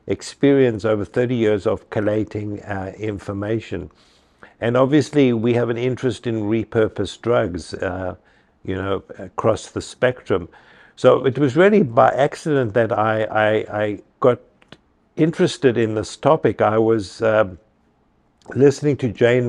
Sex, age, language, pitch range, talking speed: male, 60-79, English, 105-125 Hz, 130 wpm